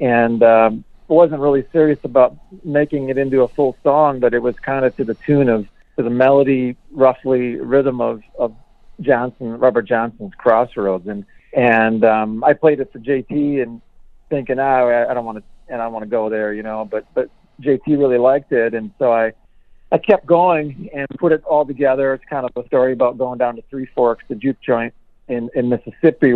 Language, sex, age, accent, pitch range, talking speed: English, male, 50-69, American, 115-145 Hz, 205 wpm